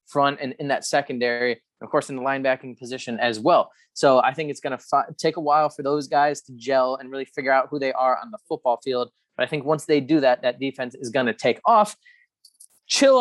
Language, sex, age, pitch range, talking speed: English, male, 20-39, 130-150 Hz, 240 wpm